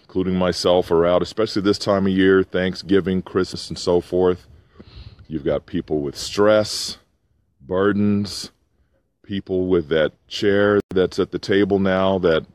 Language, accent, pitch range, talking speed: English, American, 80-100 Hz, 145 wpm